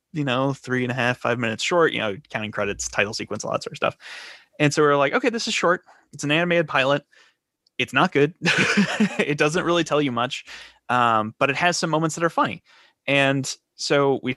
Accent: American